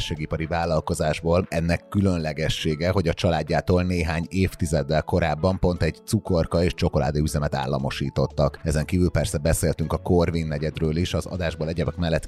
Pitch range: 80-90 Hz